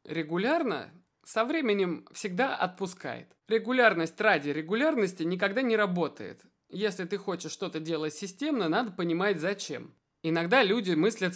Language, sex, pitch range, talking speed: Russian, male, 155-215 Hz, 120 wpm